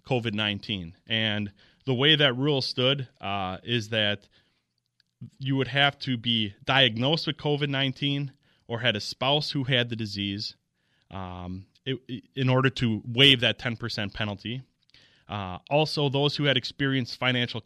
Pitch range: 115-140 Hz